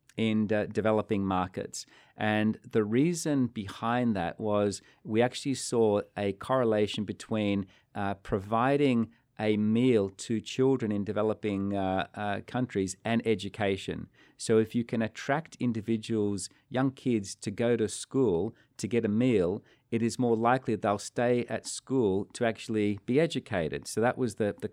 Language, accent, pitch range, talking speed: English, Australian, 105-125 Hz, 150 wpm